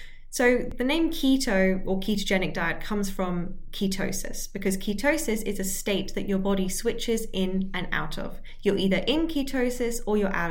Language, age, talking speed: English, 20-39, 170 wpm